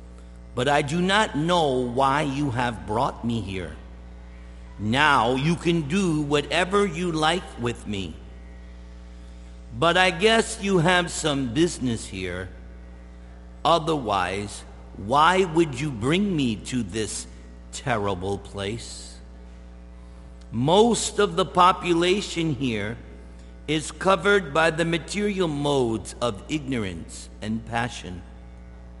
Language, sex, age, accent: English, male, 50-69, American